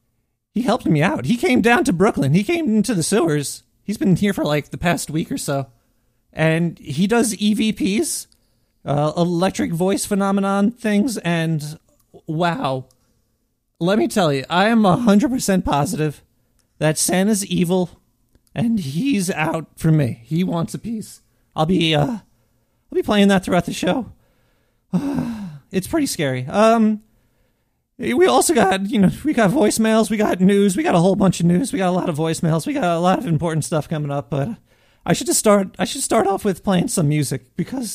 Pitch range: 150-205 Hz